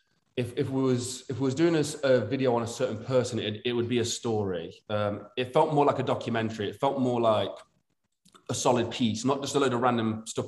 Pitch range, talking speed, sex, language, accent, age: 110-130 Hz, 240 wpm, male, English, British, 20-39